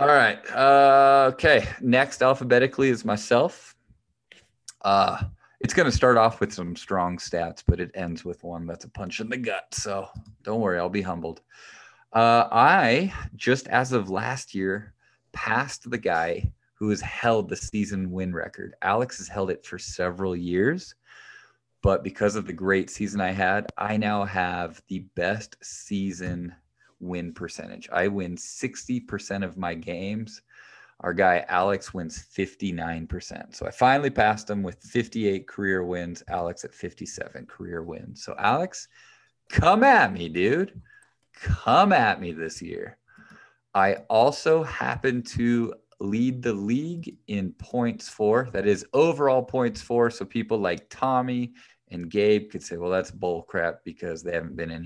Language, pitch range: English, 90-120 Hz